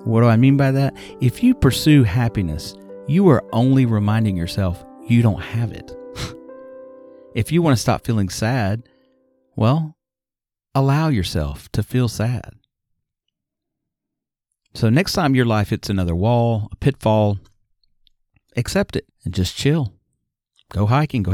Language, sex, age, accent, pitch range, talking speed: English, male, 40-59, American, 100-130 Hz, 140 wpm